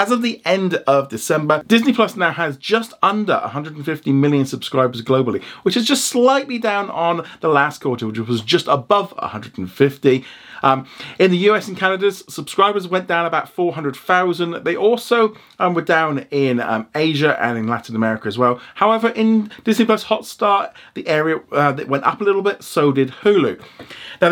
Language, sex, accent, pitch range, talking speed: English, male, British, 130-180 Hz, 180 wpm